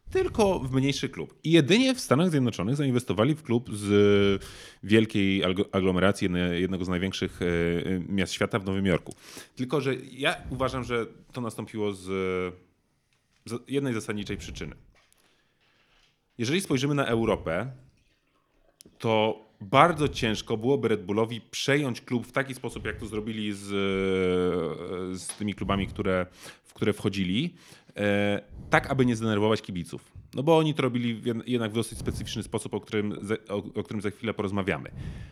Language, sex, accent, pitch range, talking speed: Polish, male, native, 95-120 Hz, 135 wpm